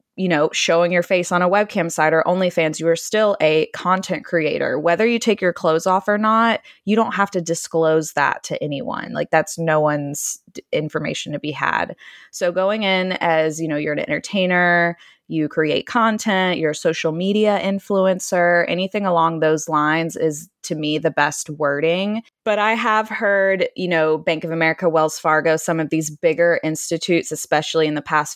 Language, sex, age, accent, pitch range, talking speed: English, female, 20-39, American, 155-195 Hz, 190 wpm